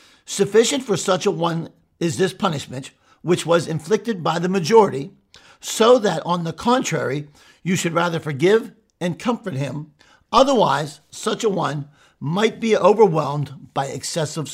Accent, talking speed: American, 145 wpm